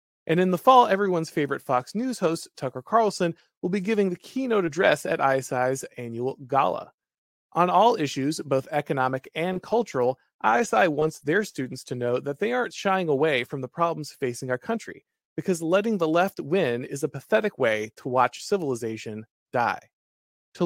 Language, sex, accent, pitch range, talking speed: English, male, American, 135-175 Hz, 170 wpm